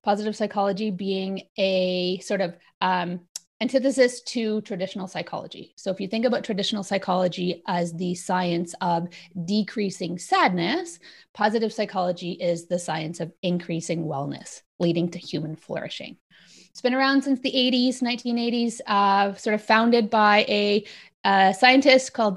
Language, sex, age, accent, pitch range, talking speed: English, female, 30-49, American, 185-240 Hz, 135 wpm